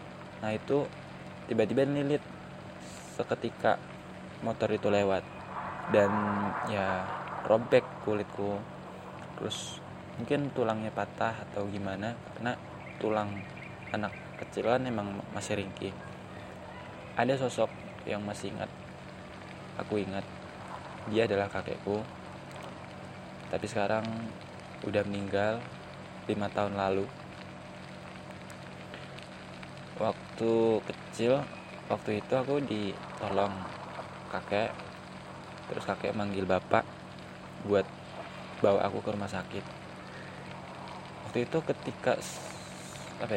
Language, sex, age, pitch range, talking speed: Indonesian, male, 20-39, 95-110 Hz, 85 wpm